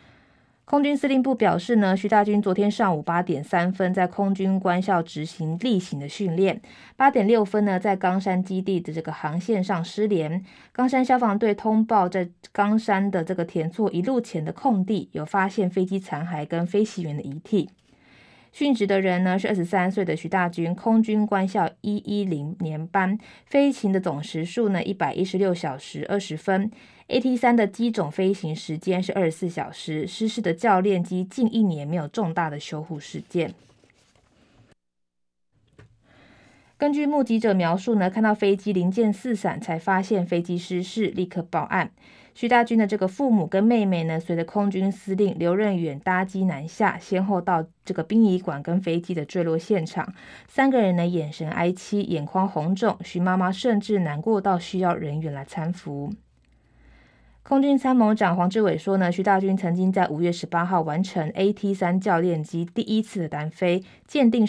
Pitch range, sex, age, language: 170-210 Hz, female, 20-39, Chinese